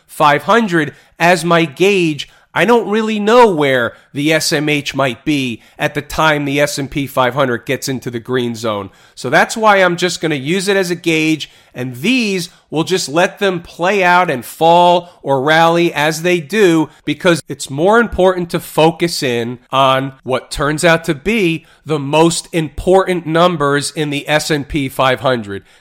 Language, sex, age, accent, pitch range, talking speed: English, male, 40-59, American, 140-180 Hz, 165 wpm